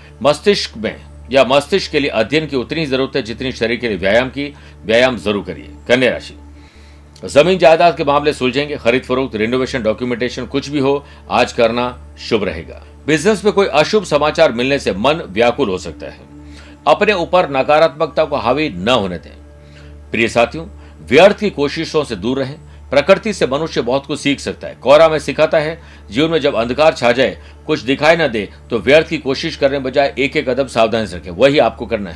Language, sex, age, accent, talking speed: Hindi, male, 60-79, native, 190 wpm